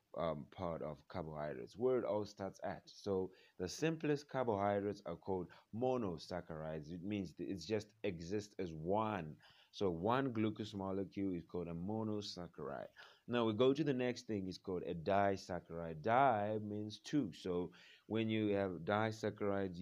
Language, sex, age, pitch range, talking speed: English, male, 30-49, 90-110 Hz, 150 wpm